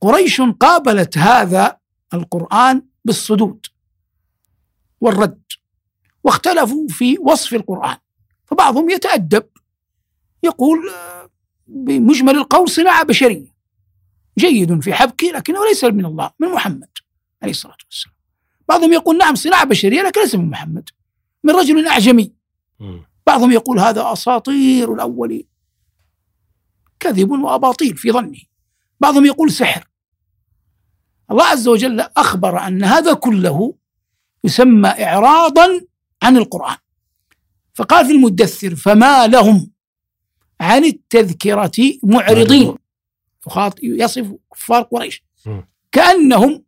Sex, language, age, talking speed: male, Arabic, 60-79, 100 wpm